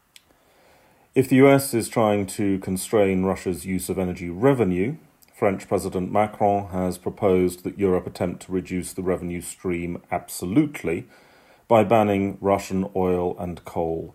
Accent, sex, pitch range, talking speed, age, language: British, male, 90-105 Hz, 135 wpm, 40-59, English